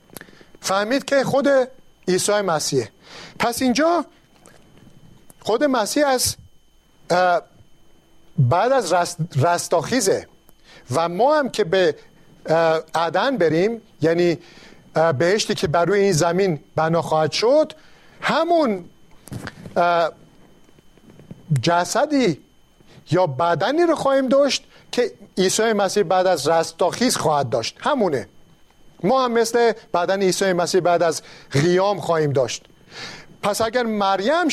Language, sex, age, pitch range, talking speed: Persian, male, 50-69, 165-235 Hz, 105 wpm